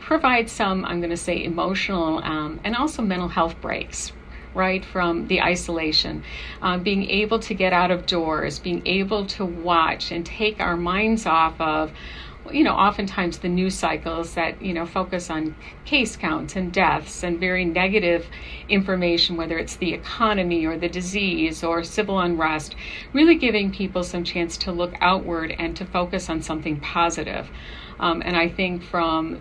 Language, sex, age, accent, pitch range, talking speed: English, female, 50-69, American, 165-195 Hz, 170 wpm